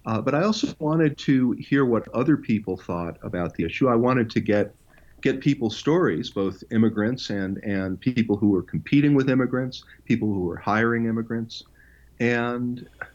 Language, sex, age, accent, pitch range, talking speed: English, male, 50-69, American, 100-125 Hz, 170 wpm